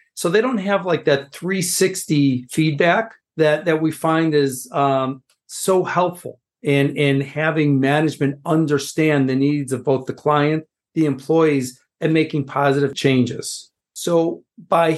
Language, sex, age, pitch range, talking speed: English, male, 50-69, 140-175 Hz, 140 wpm